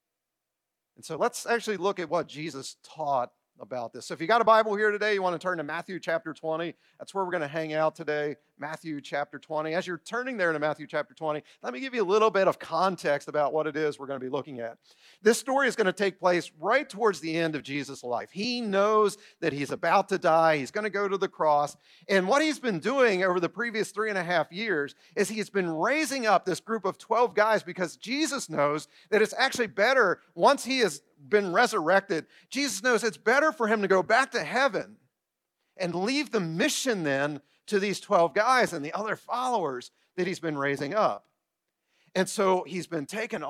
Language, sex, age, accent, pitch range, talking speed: English, male, 40-59, American, 155-215 Hz, 225 wpm